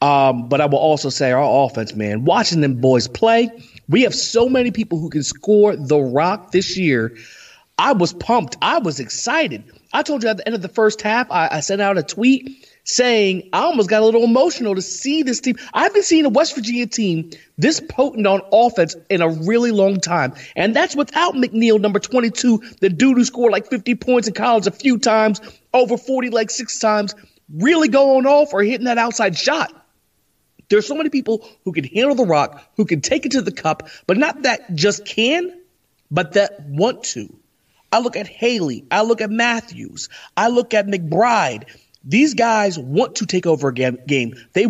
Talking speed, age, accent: 205 wpm, 30-49, American